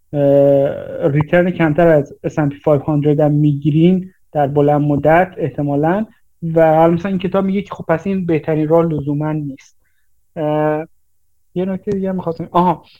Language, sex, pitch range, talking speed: Persian, male, 155-185 Hz, 140 wpm